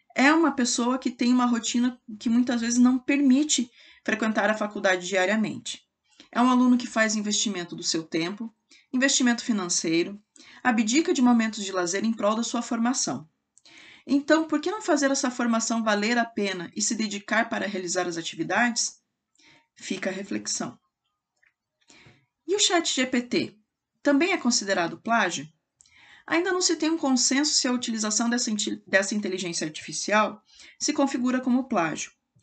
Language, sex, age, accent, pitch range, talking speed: Portuguese, female, 20-39, Brazilian, 200-270 Hz, 150 wpm